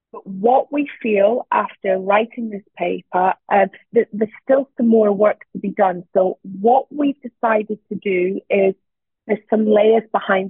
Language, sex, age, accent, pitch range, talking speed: English, female, 30-49, British, 185-215 Hz, 165 wpm